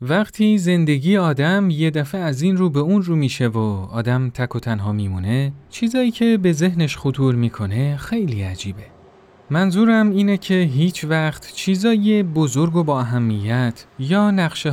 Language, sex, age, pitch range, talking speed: Persian, male, 30-49, 120-175 Hz, 150 wpm